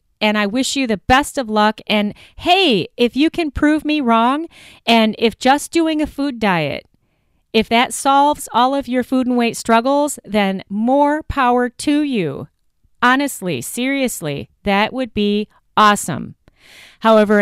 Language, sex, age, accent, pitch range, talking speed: English, female, 40-59, American, 210-270 Hz, 155 wpm